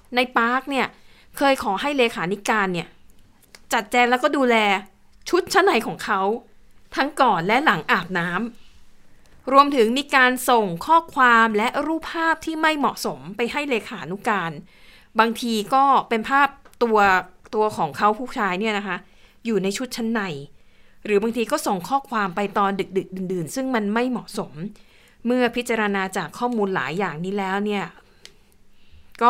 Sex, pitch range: female, 195-250 Hz